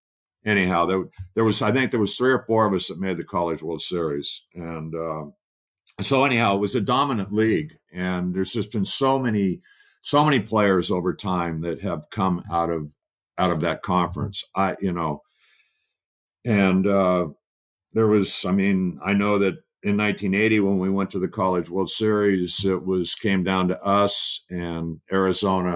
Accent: American